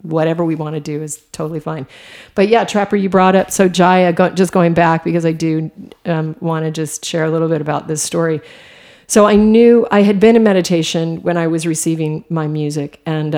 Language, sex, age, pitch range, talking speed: English, female, 40-59, 155-180 Hz, 215 wpm